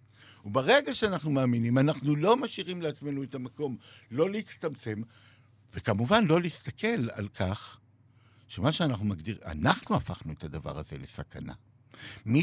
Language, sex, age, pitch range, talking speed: Hebrew, male, 60-79, 110-150 Hz, 125 wpm